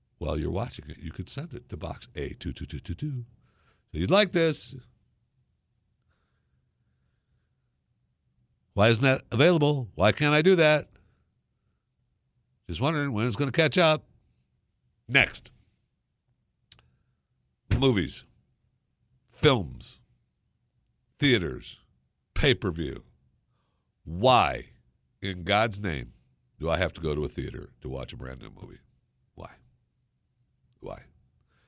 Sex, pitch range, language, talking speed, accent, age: male, 90-130 Hz, English, 100 wpm, American, 60-79